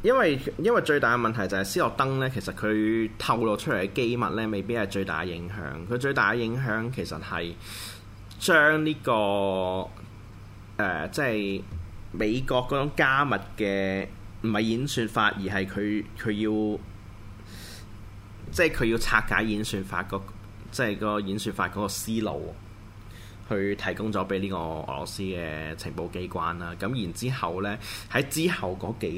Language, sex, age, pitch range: Chinese, male, 20-39, 95-110 Hz